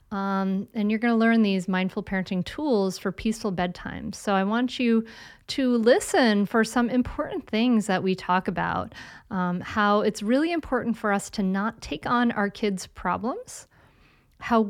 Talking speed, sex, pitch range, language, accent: 170 wpm, female, 200-265 Hz, English, American